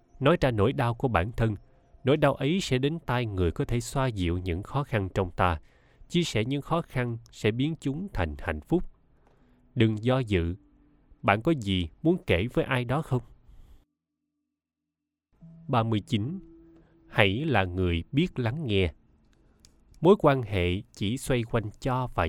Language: Vietnamese